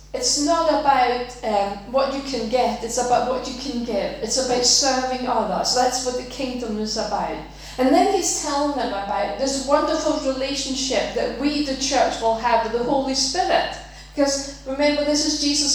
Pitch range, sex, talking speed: 235-285 Hz, female, 185 wpm